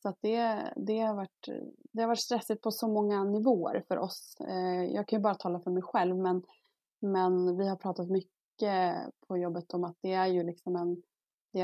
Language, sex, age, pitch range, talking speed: English, female, 20-39, 180-210 Hz, 195 wpm